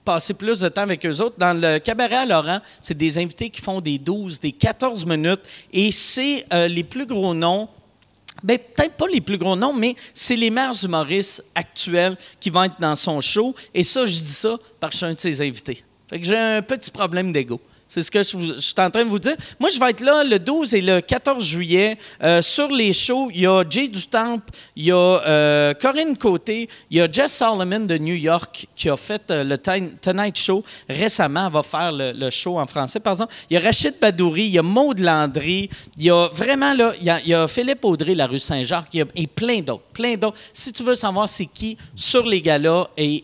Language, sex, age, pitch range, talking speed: French, male, 40-59, 160-225 Hz, 245 wpm